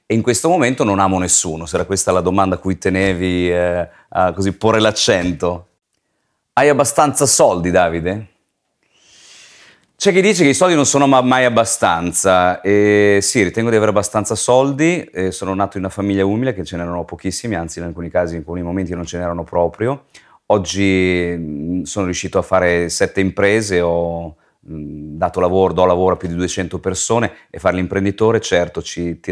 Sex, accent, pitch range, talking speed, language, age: male, native, 90-105 Hz, 175 wpm, Italian, 30-49